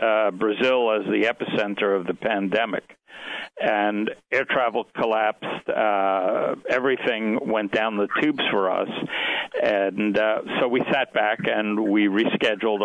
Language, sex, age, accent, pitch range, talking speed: English, male, 60-79, American, 105-125 Hz, 135 wpm